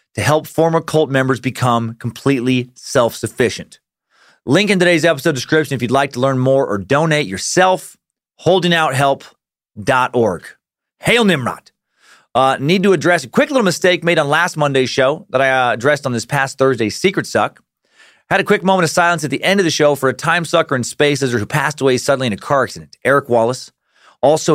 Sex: male